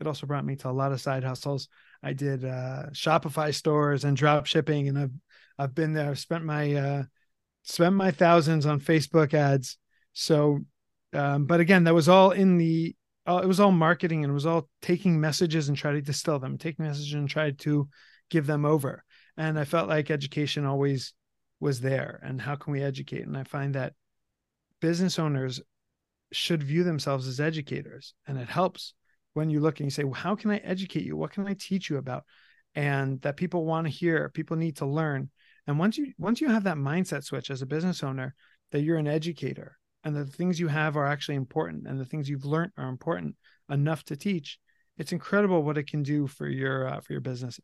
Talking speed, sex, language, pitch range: 215 wpm, male, English, 140-165 Hz